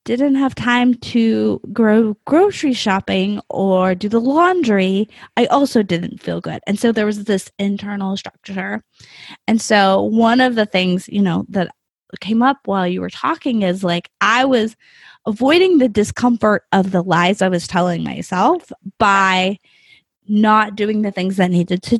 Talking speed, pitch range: 165 wpm, 190-240 Hz